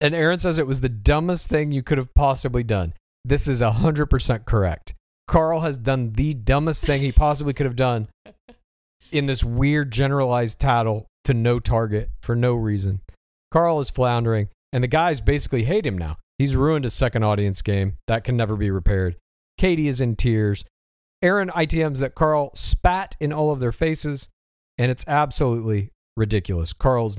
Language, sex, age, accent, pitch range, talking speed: English, male, 40-59, American, 100-140 Hz, 175 wpm